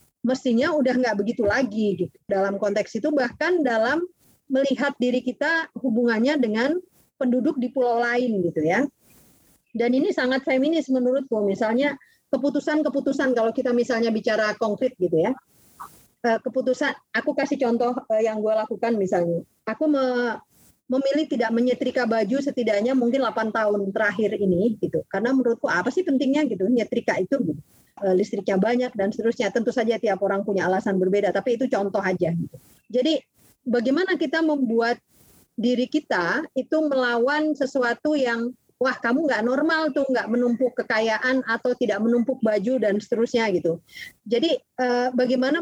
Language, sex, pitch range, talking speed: Indonesian, female, 220-270 Hz, 145 wpm